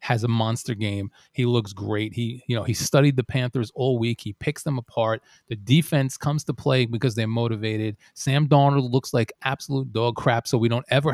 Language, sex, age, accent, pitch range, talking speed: English, male, 30-49, American, 110-130 Hz, 210 wpm